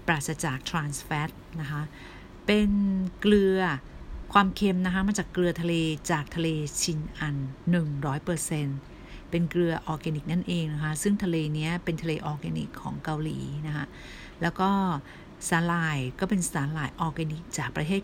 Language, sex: Thai, female